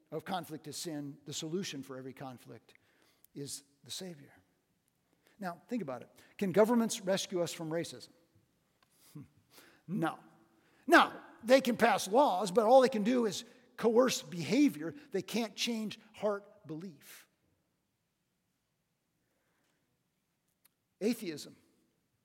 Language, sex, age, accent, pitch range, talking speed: English, male, 50-69, American, 160-220 Hz, 115 wpm